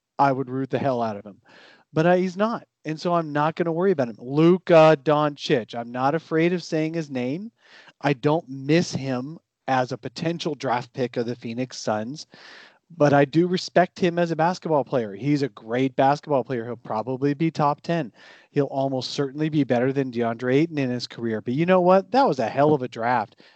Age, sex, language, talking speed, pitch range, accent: 40-59, male, English, 215 wpm, 130-165 Hz, American